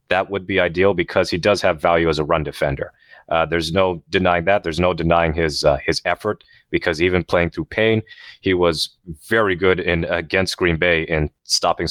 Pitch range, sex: 85-95 Hz, male